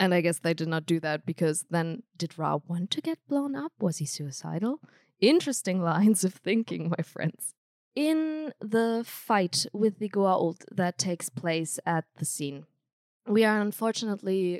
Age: 20-39